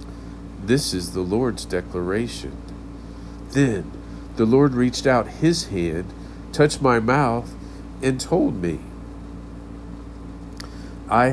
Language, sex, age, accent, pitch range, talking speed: English, male, 50-69, American, 95-130 Hz, 100 wpm